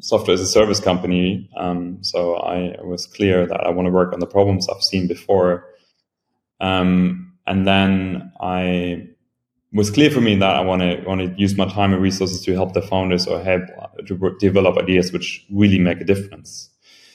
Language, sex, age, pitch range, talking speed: English, male, 20-39, 90-100 Hz, 190 wpm